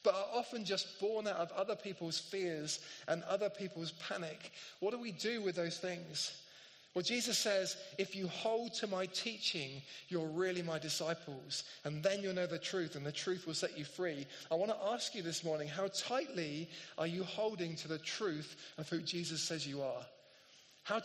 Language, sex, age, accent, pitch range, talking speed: English, male, 20-39, British, 165-215 Hz, 195 wpm